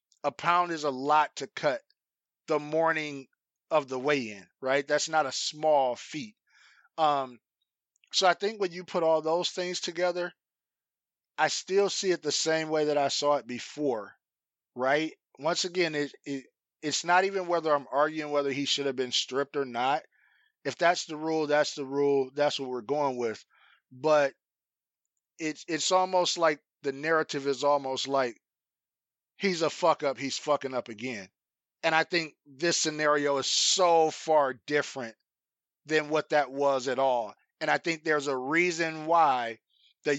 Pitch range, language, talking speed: 140-170 Hz, English, 170 wpm